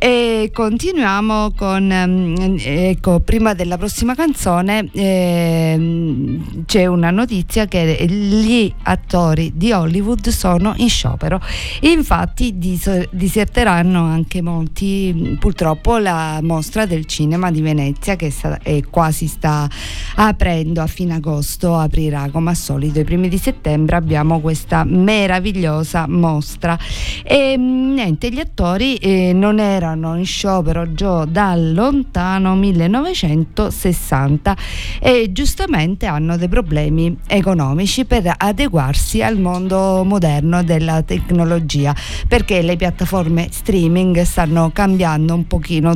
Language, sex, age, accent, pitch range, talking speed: Italian, female, 50-69, native, 160-200 Hz, 110 wpm